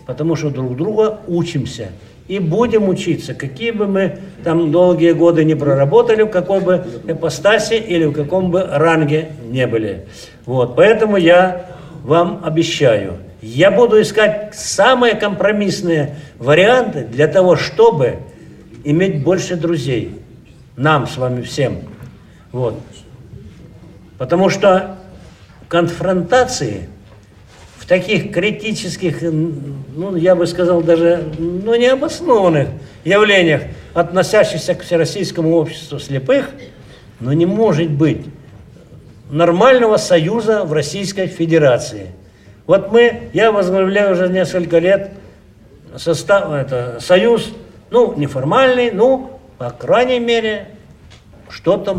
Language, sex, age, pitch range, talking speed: Russian, male, 60-79, 140-195 Hz, 105 wpm